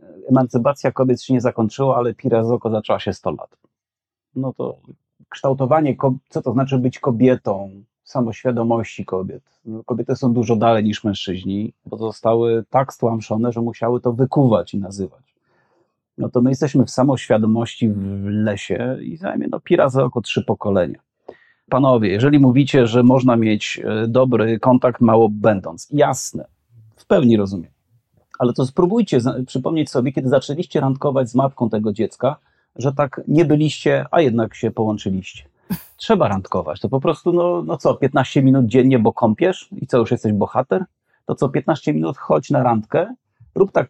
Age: 30-49